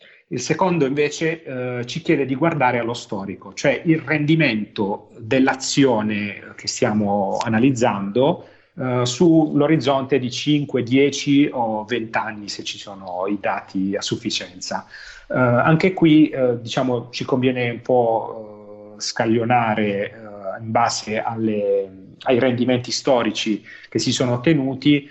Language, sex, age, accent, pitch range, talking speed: Italian, male, 40-59, native, 110-135 Hz, 125 wpm